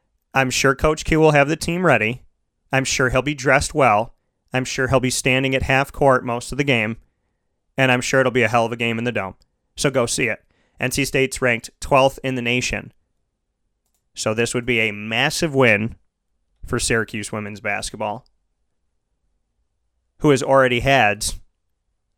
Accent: American